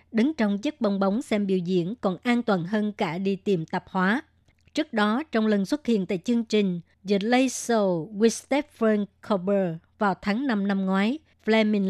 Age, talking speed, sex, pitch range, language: 60-79, 190 wpm, male, 195-225 Hz, Vietnamese